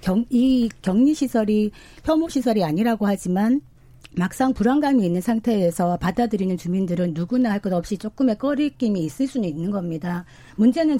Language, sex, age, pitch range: Korean, female, 40-59, 180-245 Hz